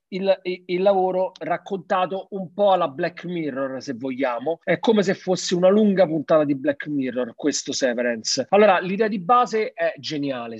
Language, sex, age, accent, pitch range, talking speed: Italian, male, 40-59, native, 145-190 Hz, 165 wpm